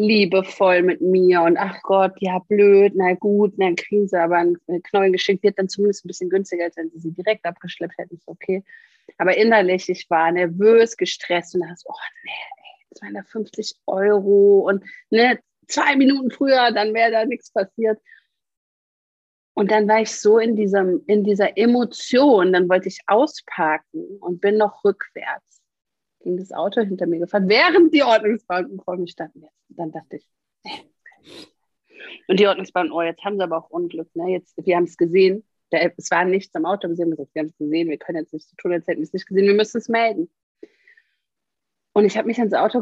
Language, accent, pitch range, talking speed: German, German, 175-220 Hz, 195 wpm